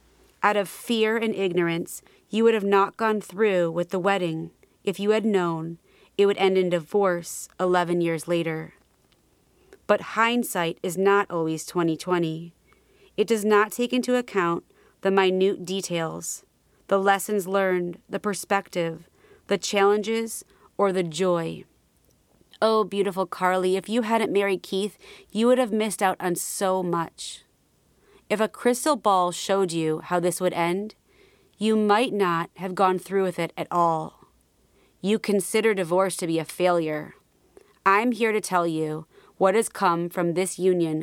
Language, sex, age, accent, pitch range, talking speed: English, female, 30-49, American, 175-210 Hz, 155 wpm